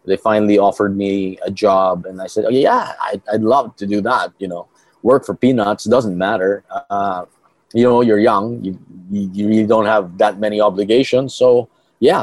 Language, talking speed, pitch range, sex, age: English, 190 wpm, 100-120 Hz, male, 30-49